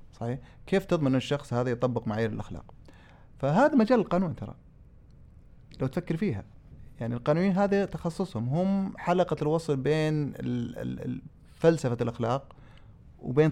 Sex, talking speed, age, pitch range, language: male, 110 wpm, 30-49, 115-155 Hz, Arabic